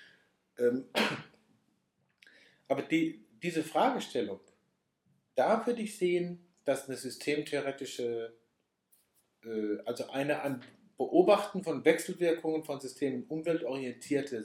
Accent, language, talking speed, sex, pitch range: German, German, 85 wpm, male, 135-180 Hz